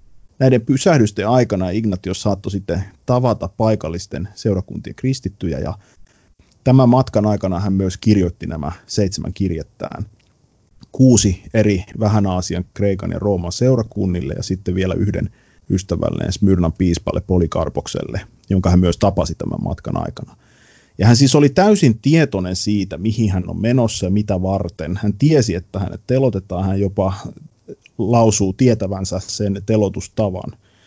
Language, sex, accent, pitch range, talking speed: Finnish, male, native, 90-110 Hz, 130 wpm